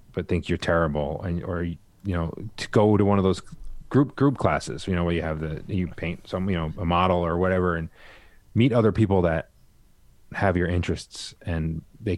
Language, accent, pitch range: English, American, 85-110 Hz